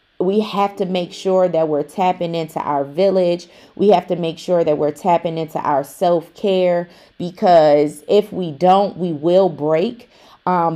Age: 30-49